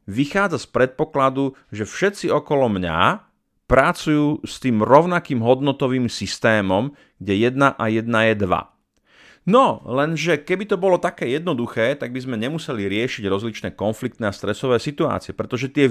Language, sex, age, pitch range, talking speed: Slovak, male, 30-49, 100-140 Hz, 145 wpm